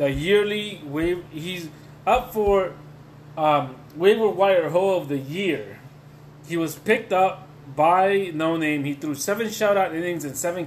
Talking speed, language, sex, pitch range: 155 wpm, English, male, 145-200 Hz